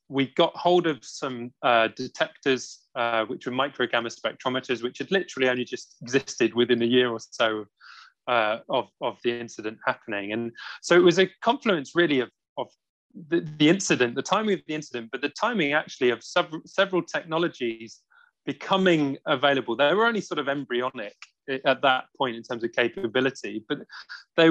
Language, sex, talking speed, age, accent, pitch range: English, male, 170 wpm, 30-49, British, 125-175 Hz